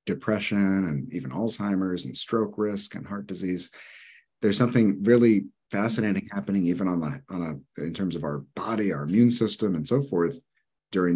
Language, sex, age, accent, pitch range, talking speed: English, male, 30-49, American, 85-110 Hz, 170 wpm